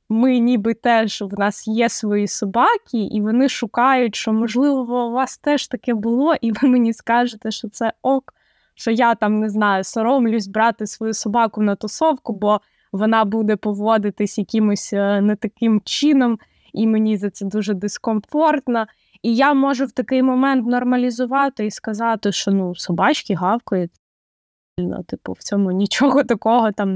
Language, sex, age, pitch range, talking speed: Ukrainian, female, 20-39, 205-250 Hz, 155 wpm